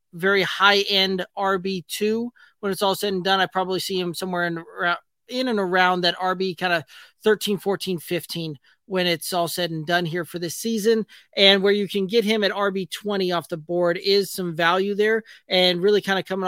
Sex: male